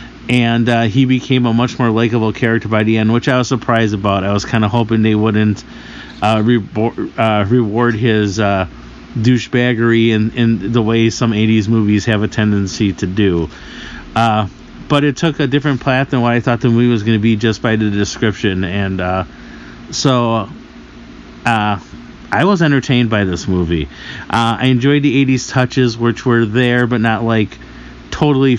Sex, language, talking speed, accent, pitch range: male, English, 180 wpm, American, 105-125 Hz